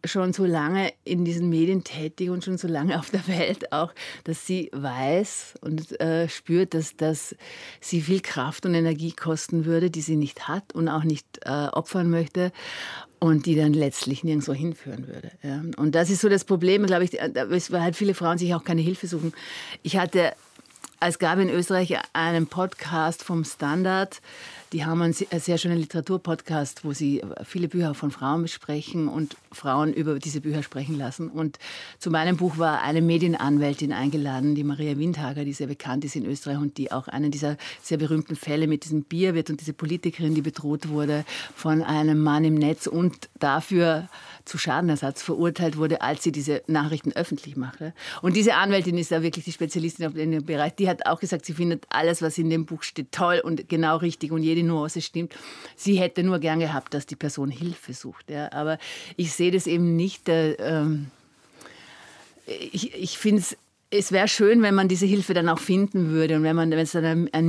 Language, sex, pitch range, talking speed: German, female, 150-175 Hz, 195 wpm